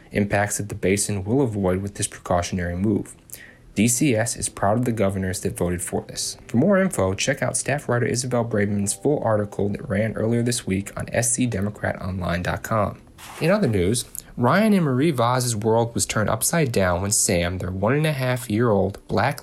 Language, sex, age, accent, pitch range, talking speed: English, male, 30-49, American, 100-125 Hz, 170 wpm